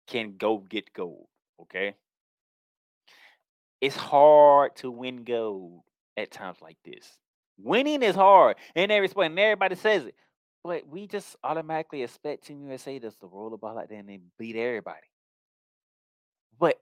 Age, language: 20-39, English